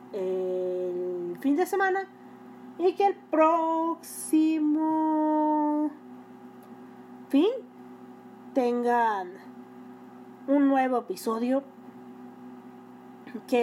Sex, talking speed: female, 60 wpm